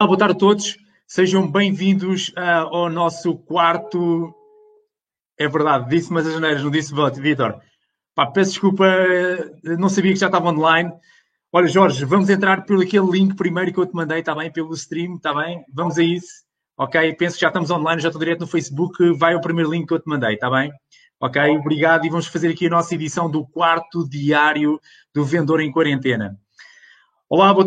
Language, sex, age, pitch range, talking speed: Portuguese, male, 20-39, 160-185 Hz, 190 wpm